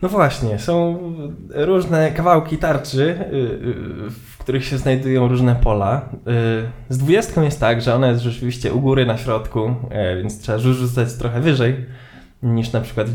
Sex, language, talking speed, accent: male, Polish, 150 wpm, native